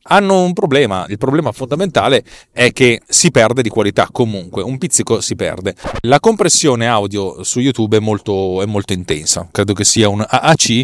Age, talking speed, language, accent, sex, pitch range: 30-49, 175 wpm, Italian, native, male, 105-140 Hz